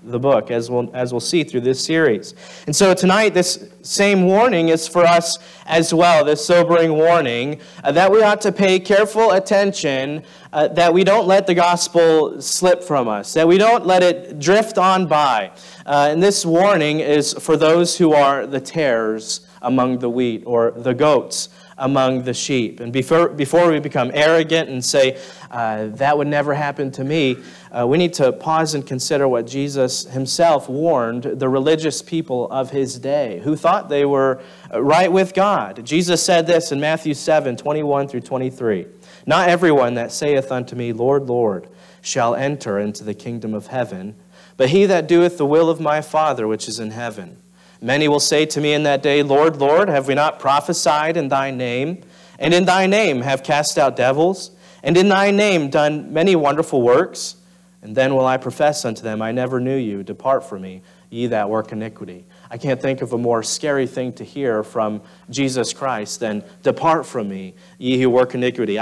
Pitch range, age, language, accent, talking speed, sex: 130-175 Hz, 30-49, English, American, 190 wpm, male